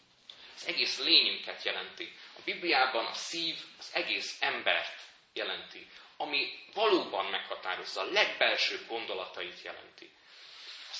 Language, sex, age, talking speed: Hungarian, male, 30-49, 110 wpm